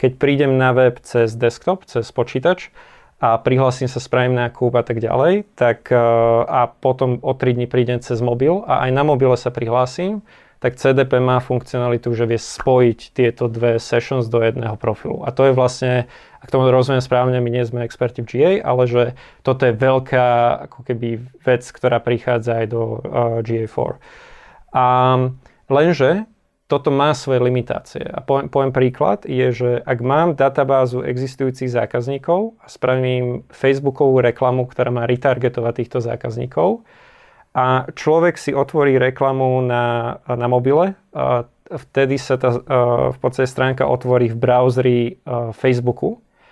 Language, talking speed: Slovak, 150 wpm